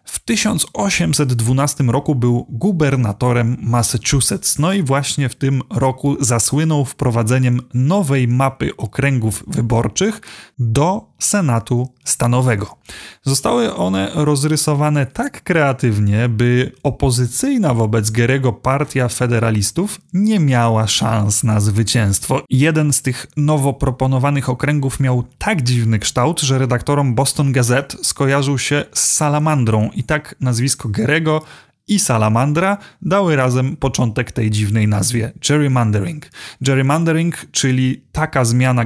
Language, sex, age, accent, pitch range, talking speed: Polish, male, 30-49, native, 120-150 Hz, 110 wpm